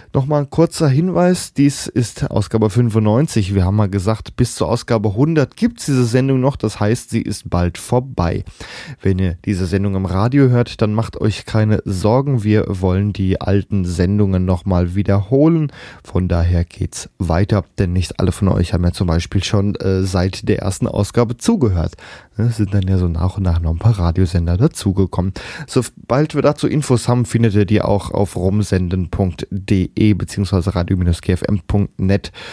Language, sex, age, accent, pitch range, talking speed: German, male, 10-29, German, 95-120 Hz, 170 wpm